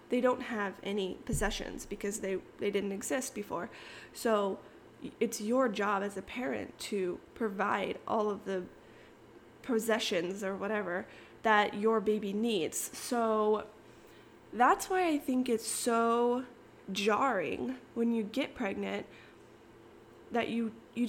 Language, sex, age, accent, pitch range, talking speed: English, female, 20-39, American, 205-240 Hz, 130 wpm